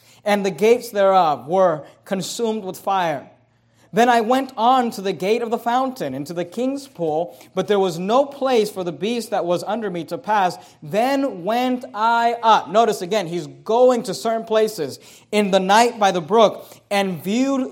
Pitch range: 185-230 Hz